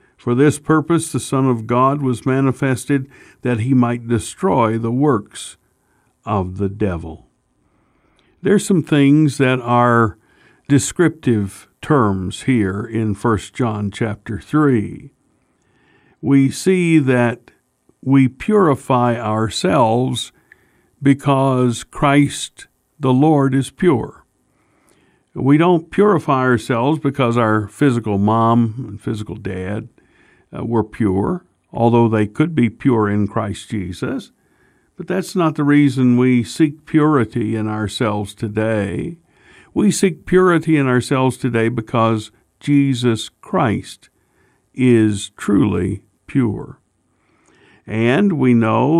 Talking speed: 110 wpm